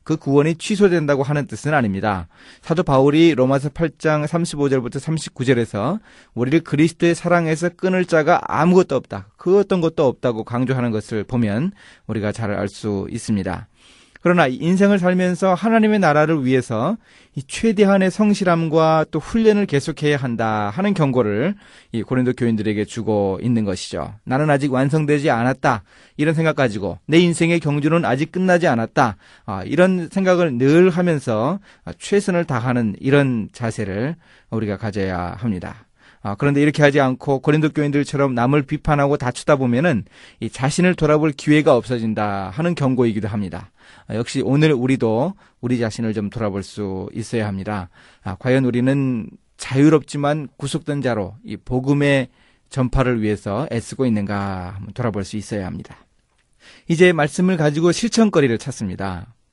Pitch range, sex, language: 110-160 Hz, male, Korean